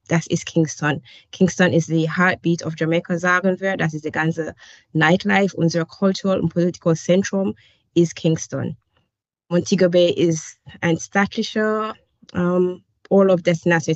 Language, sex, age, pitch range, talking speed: German, female, 20-39, 160-185 Hz, 140 wpm